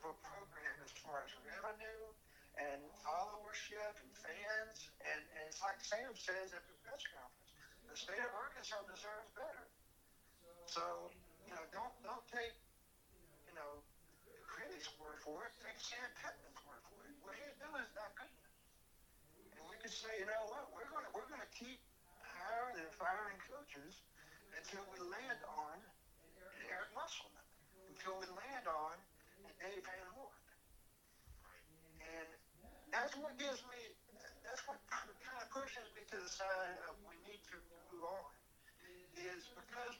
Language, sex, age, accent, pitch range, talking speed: English, male, 60-79, American, 170-220 Hz, 155 wpm